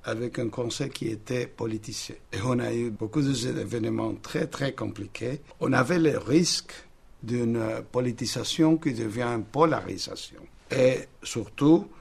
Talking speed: 135 wpm